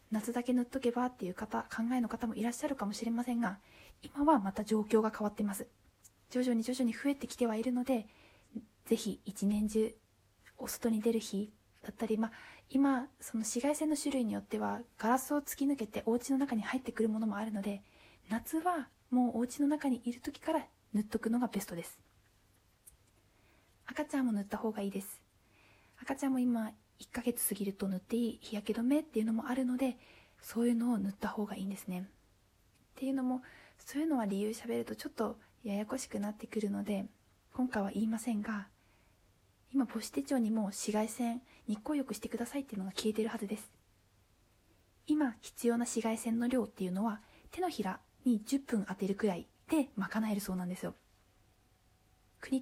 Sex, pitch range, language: female, 200-250 Hz, Japanese